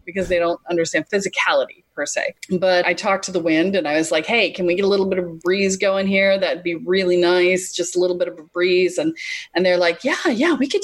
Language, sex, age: English, female, 30-49